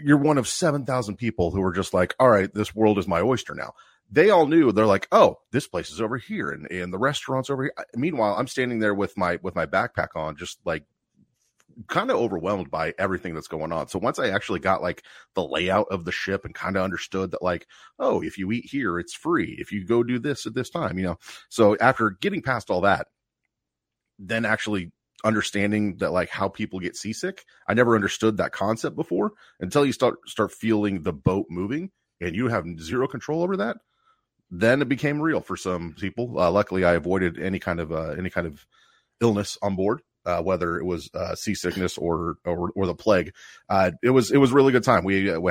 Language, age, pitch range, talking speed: English, 30-49, 90-125 Hz, 220 wpm